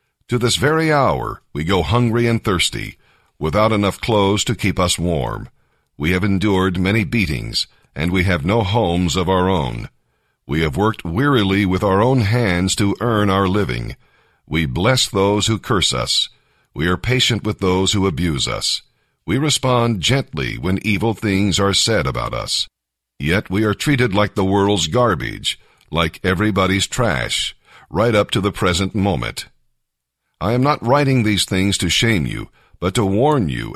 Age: 50-69